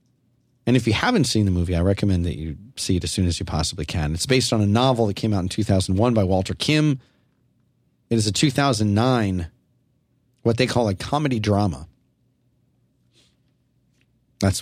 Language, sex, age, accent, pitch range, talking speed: English, male, 30-49, American, 100-130 Hz, 175 wpm